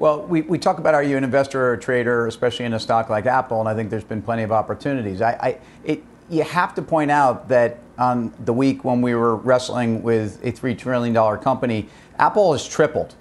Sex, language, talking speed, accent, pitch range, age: male, English, 225 wpm, American, 115-140 Hz, 50-69